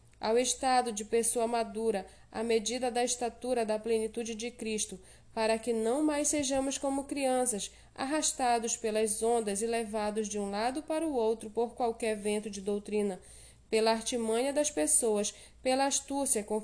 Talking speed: 155 wpm